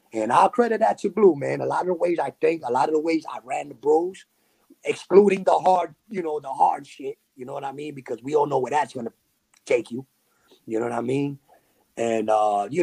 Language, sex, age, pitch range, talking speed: English, male, 30-49, 135-215 Hz, 255 wpm